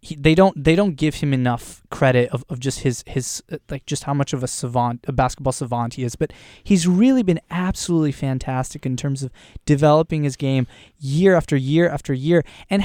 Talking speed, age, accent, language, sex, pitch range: 205 wpm, 20-39, American, English, male, 135-205 Hz